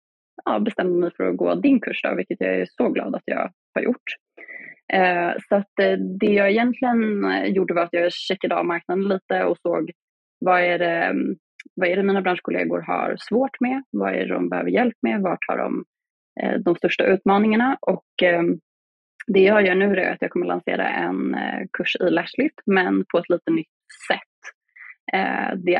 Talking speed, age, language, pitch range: 190 wpm, 20-39, Swedish, 170-220 Hz